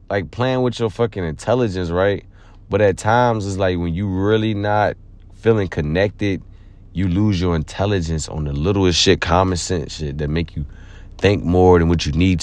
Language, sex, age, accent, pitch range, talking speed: English, male, 30-49, American, 90-100 Hz, 185 wpm